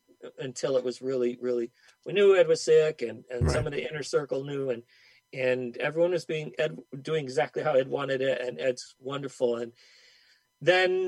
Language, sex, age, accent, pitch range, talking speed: English, male, 40-59, American, 125-165 Hz, 190 wpm